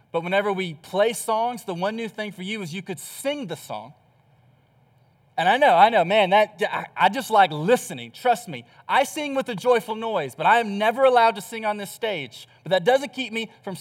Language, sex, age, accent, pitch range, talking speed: English, male, 20-39, American, 185-260 Hz, 225 wpm